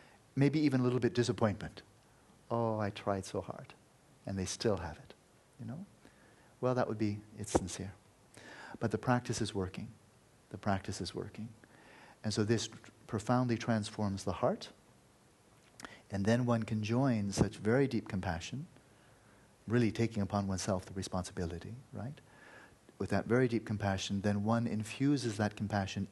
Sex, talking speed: male, 150 wpm